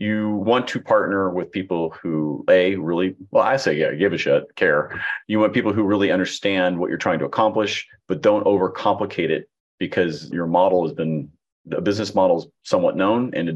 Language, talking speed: English, 200 wpm